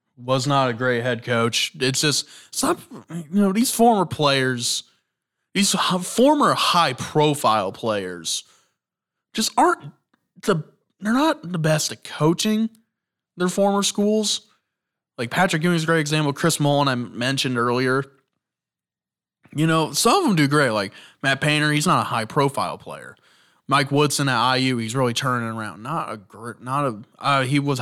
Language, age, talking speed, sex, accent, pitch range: English, 20-39, 160 wpm, male, American, 120-160 Hz